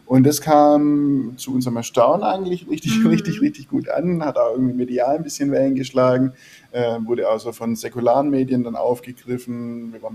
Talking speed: 175 wpm